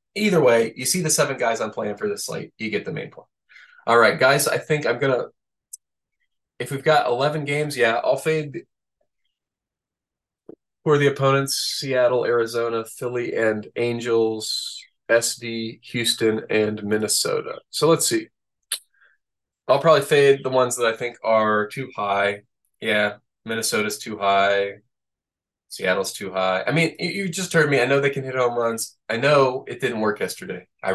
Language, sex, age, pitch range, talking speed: English, male, 20-39, 110-145 Hz, 170 wpm